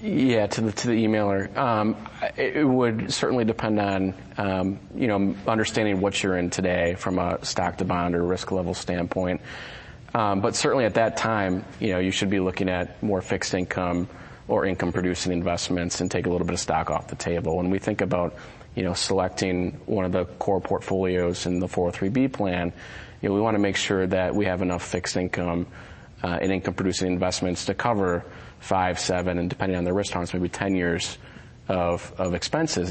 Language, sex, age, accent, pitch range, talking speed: English, male, 30-49, American, 85-100 Hz, 200 wpm